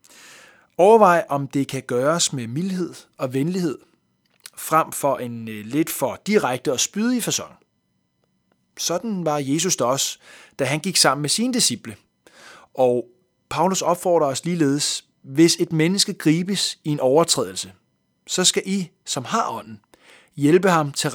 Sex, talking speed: male, 140 wpm